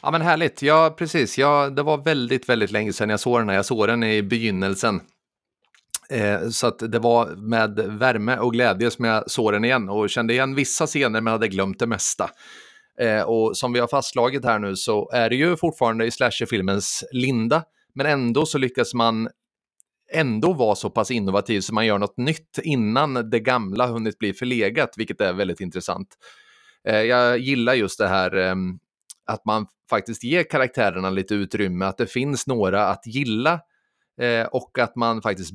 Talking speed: 185 wpm